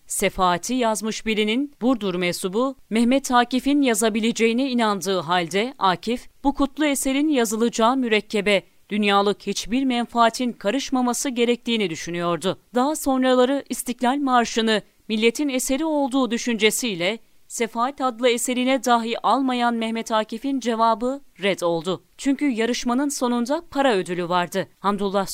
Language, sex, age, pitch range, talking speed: Turkish, female, 40-59, 205-255 Hz, 110 wpm